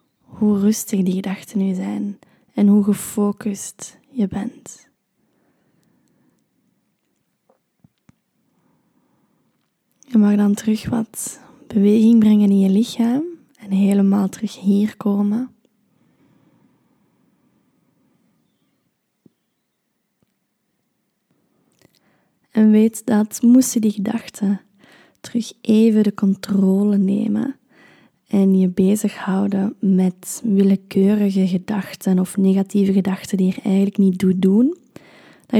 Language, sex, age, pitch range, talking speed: Dutch, female, 20-39, 195-225 Hz, 90 wpm